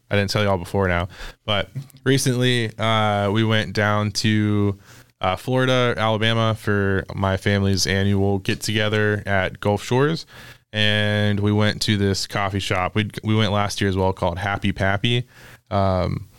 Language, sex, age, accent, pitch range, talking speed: English, male, 20-39, American, 95-110 Hz, 155 wpm